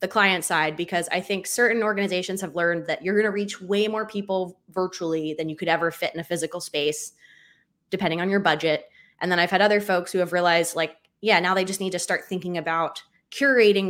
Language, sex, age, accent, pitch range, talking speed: English, female, 20-39, American, 165-205 Hz, 225 wpm